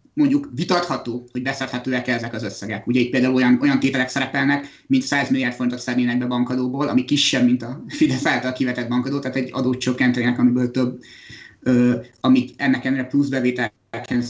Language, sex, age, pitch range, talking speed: Hungarian, male, 30-49, 125-140 Hz, 170 wpm